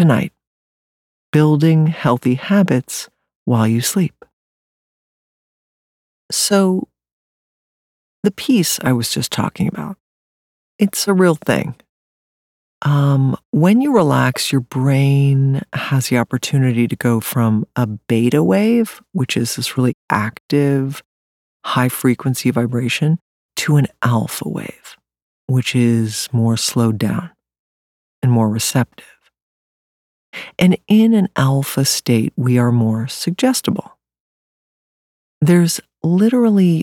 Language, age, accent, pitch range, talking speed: English, 50-69, American, 115-170 Hz, 105 wpm